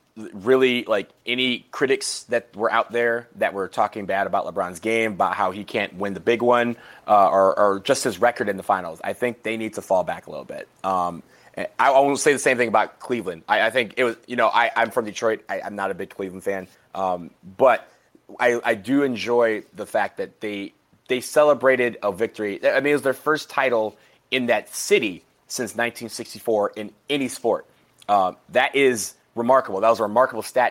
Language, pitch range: English, 105-135 Hz